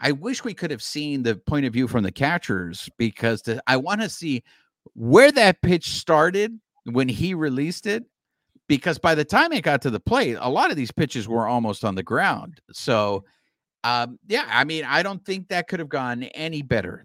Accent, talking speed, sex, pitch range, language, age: American, 210 wpm, male, 110-170 Hz, English, 50-69